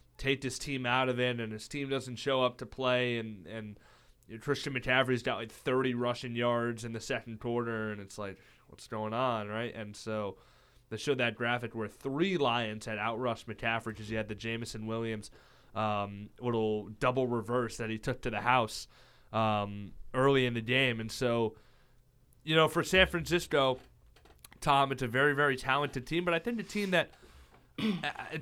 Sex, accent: male, American